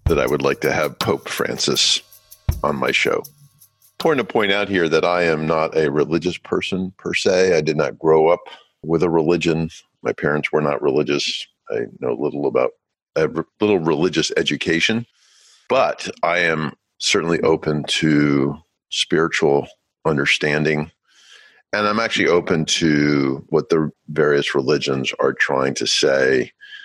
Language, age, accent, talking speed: English, 50-69, American, 150 wpm